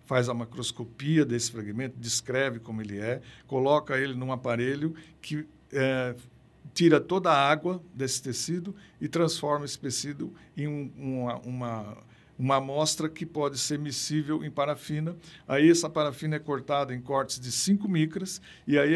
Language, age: Portuguese, 60-79